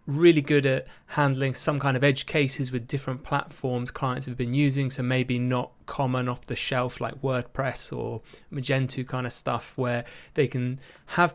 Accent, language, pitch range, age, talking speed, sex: British, English, 125-155 Hz, 20-39, 180 wpm, male